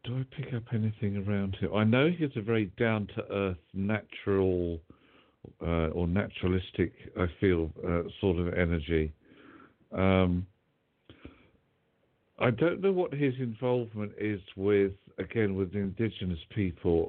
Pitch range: 90-110 Hz